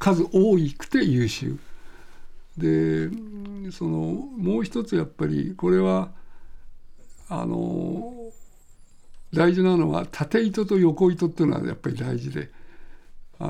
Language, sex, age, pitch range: Japanese, male, 60-79, 140-175 Hz